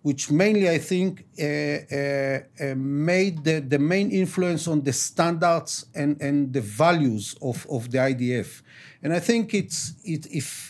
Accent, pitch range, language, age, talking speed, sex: Israeli, 145-190 Hz, English, 50-69, 165 wpm, male